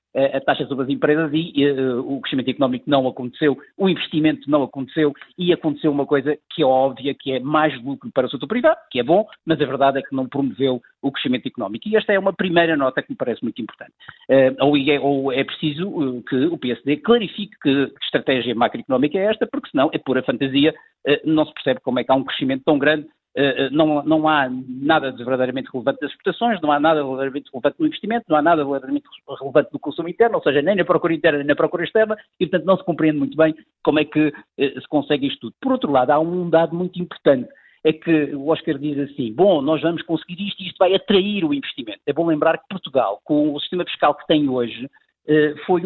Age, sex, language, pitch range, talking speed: 50-69, male, Portuguese, 140-180 Hz, 230 wpm